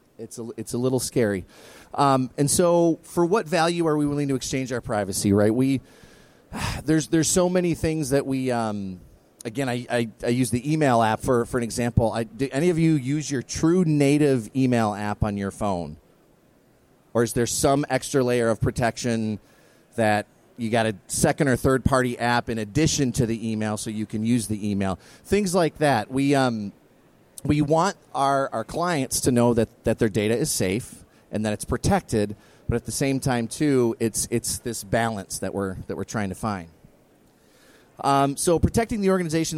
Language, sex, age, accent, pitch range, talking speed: English, male, 30-49, American, 110-140 Hz, 195 wpm